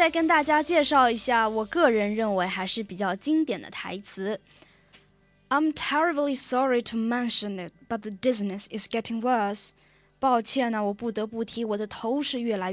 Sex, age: female, 20-39